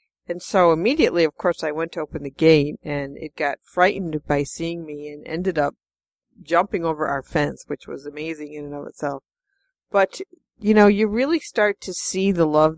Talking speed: 195 wpm